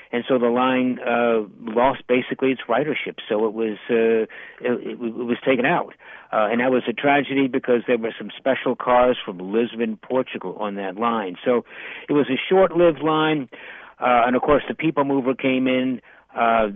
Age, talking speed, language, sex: 60-79, 185 wpm, English, male